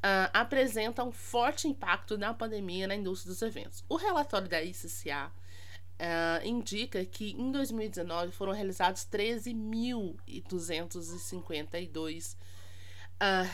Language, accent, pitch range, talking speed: Portuguese, Brazilian, 155-240 Hz, 95 wpm